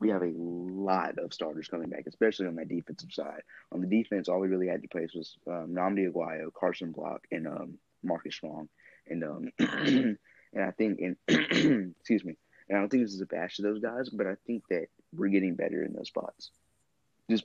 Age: 20-39